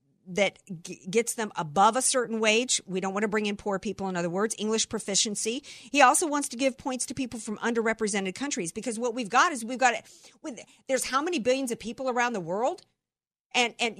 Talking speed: 215 wpm